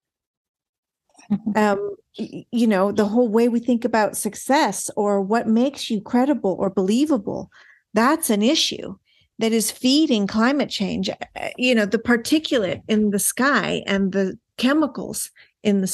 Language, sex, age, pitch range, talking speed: English, female, 40-59, 195-245 Hz, 140 wpm